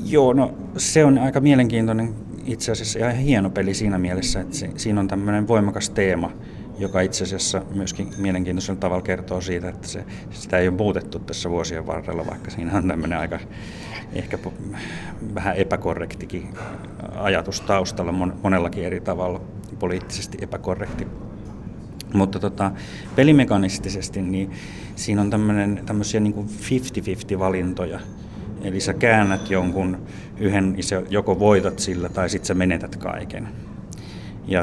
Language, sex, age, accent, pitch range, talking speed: Finnish, male, 30-49, native, 90-105 Hz, 135 wpm